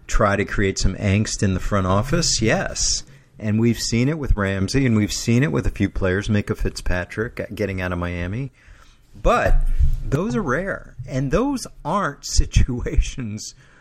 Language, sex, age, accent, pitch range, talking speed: English, male, 40-59, American, 100-130 Hz, 170 wpm